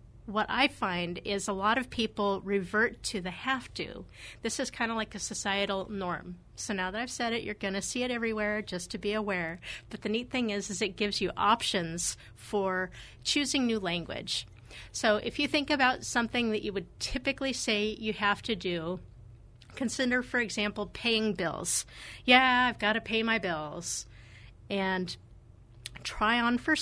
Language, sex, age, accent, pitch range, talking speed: English, female, 40-59, American, 170-230 Hz, 180 wpm